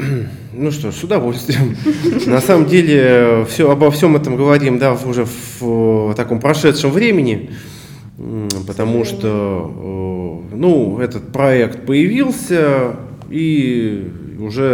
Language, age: Russian, 20-39